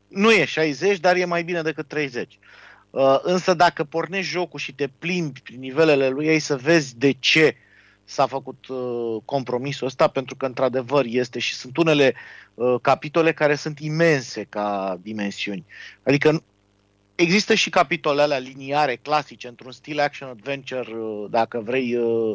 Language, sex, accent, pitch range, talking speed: Romanian, male, native, 130-160 Hz, 140 wpm